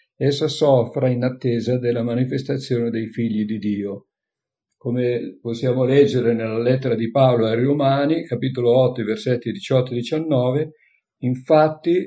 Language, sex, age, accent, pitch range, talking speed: Italian, male, 50-69, native, 115-140 Hz, 120 wpm